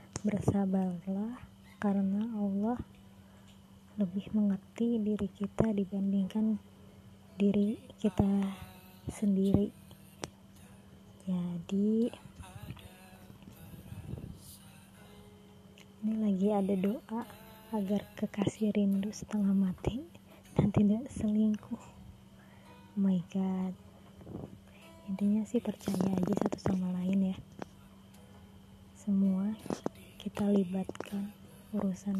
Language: Indonesian